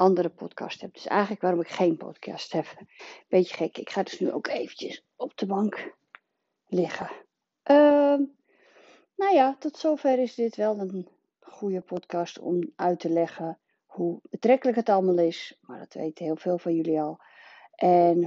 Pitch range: 170-225 Hz